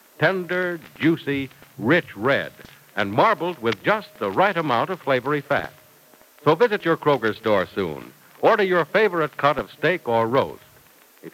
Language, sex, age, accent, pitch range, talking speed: English, male, 60-79, American, 125-180 Hz, 155 wpm